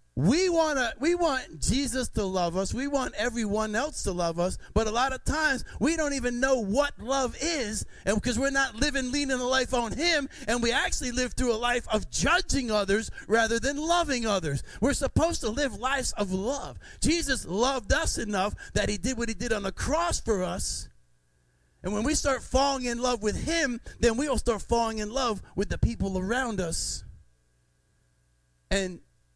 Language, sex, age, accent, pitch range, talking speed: English, male, 30-49, American, 165-250 Hz, 190 wpm